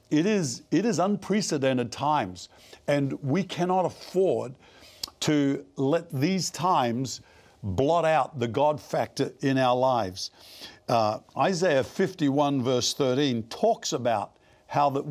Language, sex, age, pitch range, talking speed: English, male, 60-79, 130-170 Hz, 125 wpm